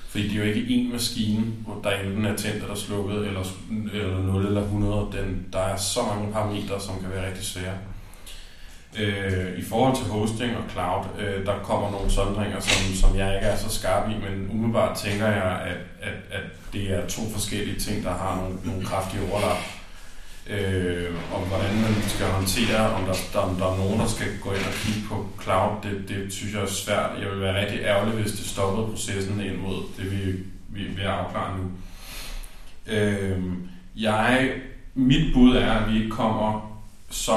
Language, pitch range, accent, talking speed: Danish, 95-110 Hz, native, 180 wpm